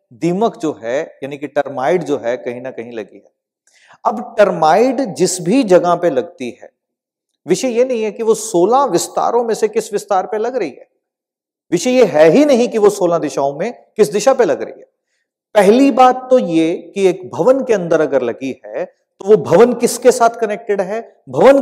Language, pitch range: Hindi, 160-240 Hz